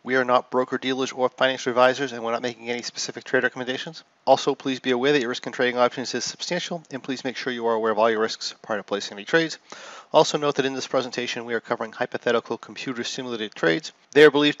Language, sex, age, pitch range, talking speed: English, male, 40-59, 120-145 Hz, 245 wpm